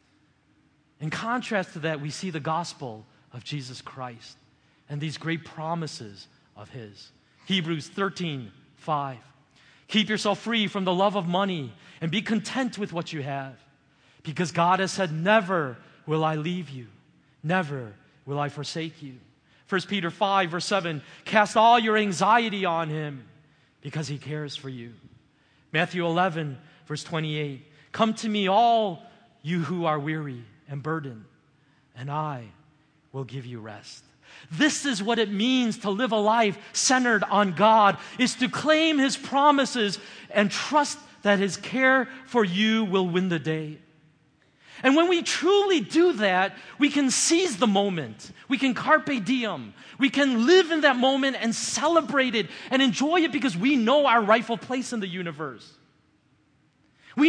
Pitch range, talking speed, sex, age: 145-225 Hz, 155 wpm, male, 30-49